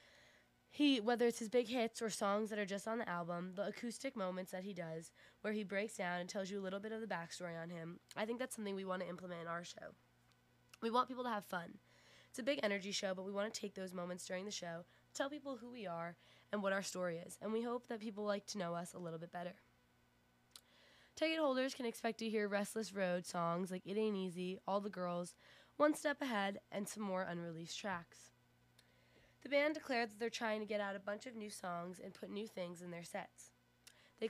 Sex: female